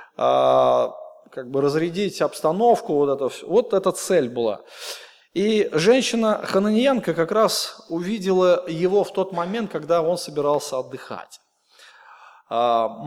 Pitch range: 155-220 Hz